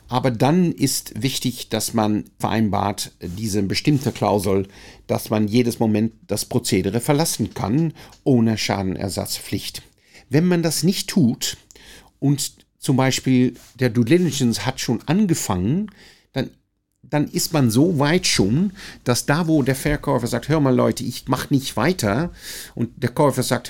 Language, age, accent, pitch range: Dutch, 50-69, German, 110-150 Hz